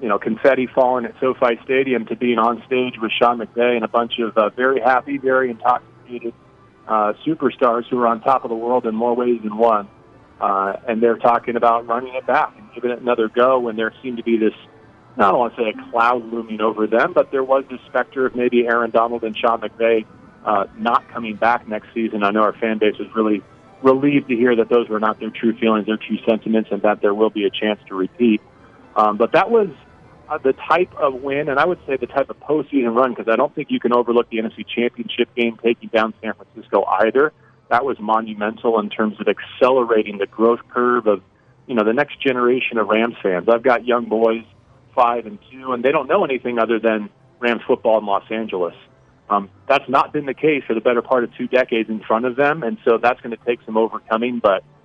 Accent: American